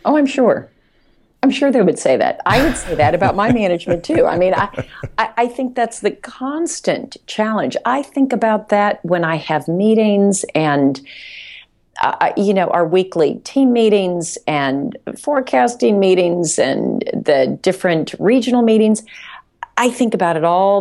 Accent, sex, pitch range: American, female, 145-195 Hz